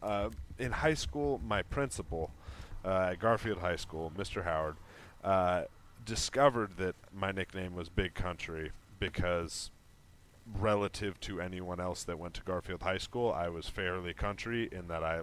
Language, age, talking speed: English, 30-49, 155 wpm